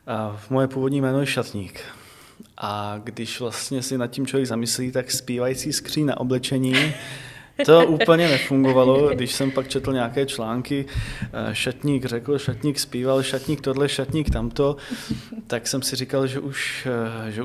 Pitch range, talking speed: 125-145 Hz, 150 wpm